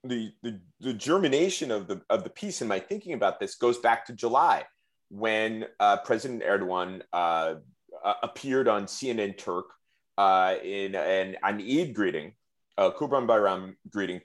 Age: 30-49